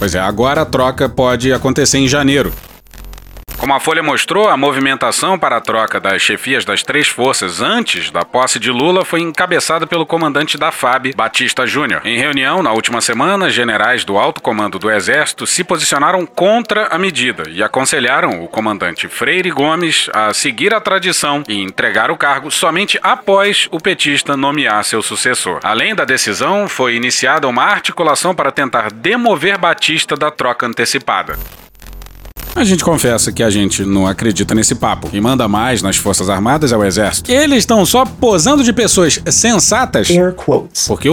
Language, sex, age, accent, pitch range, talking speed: Portuguese, male, 40-59, Brazilian, 115-170 Hz, 165 wpm